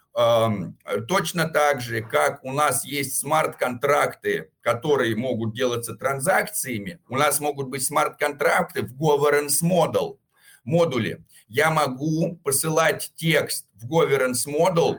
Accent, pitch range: native, 125-160 Hz